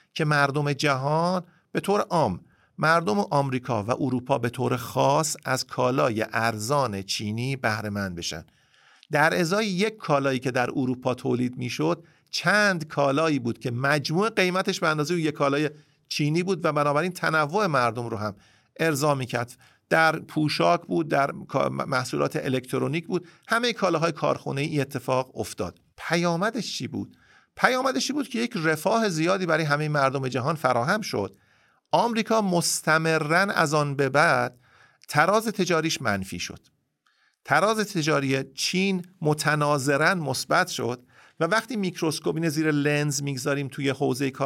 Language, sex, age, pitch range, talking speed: Persian, male, 50-69, 130-170 Hz, 140 wpm